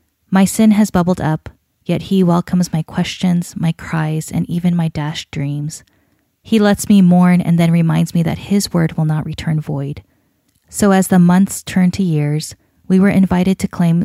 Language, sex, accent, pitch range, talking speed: English, female, American, 160-195 Hz, 190 wpm